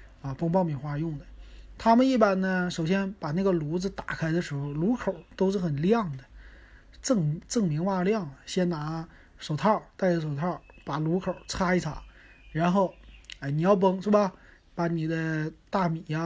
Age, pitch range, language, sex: 30-49, 145-195 Hz, Chinese, male